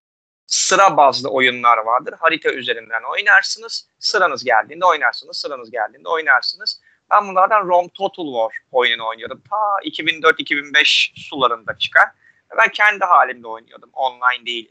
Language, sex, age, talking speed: Turkish, male, 30-49, 120 wpm